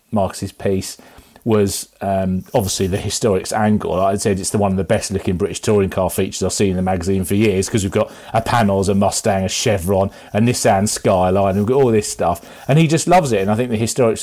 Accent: British